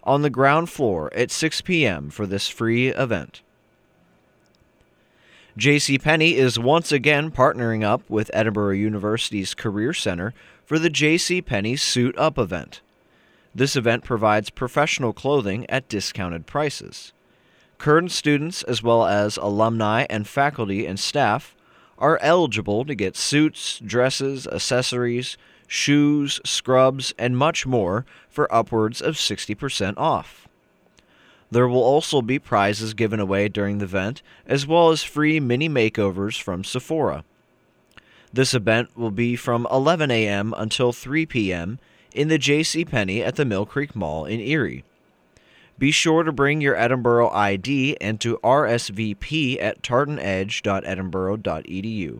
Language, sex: English, male